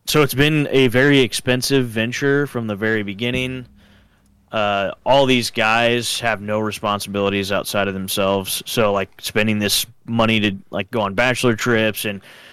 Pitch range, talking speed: 105-120 Hz, 160 wpm